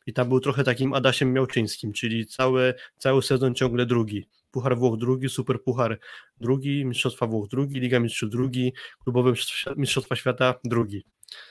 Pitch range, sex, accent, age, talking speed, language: 120-135 Hz, male, native, 20-39, 150 wpm, Polish